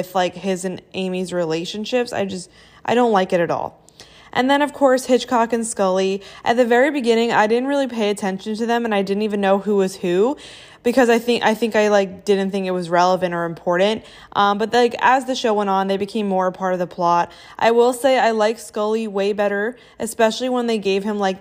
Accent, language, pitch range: American, English, 185-225 Hz